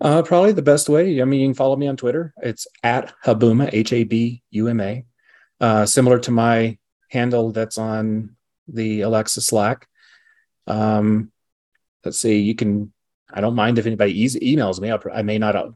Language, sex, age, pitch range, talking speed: English, male, 30-49, 100-120 Hz, 170 wpm